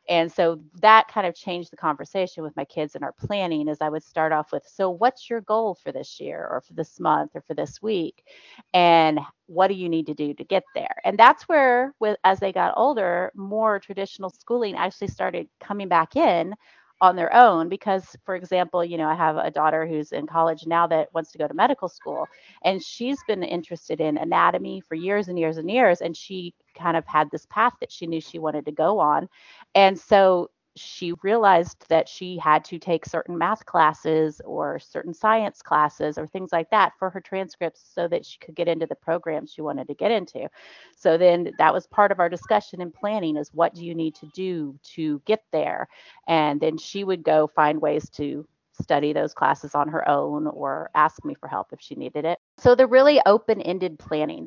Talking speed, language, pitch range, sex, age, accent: 215 wpm, English, 155-195 Hz, female, 30-49, American